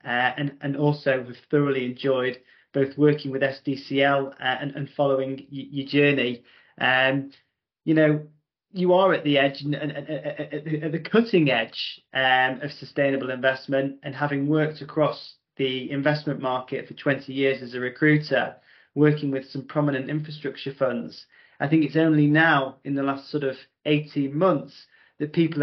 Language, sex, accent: English, male, British